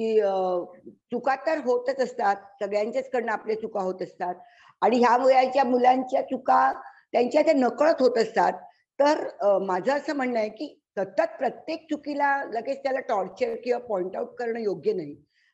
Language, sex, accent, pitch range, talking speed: Marathi, female, native, 205-275 Hz, 155 wpm